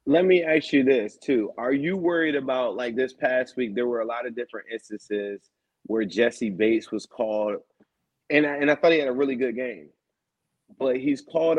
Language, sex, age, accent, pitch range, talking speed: English, male, 30-49, American, 120-150 Hz, 205 wpm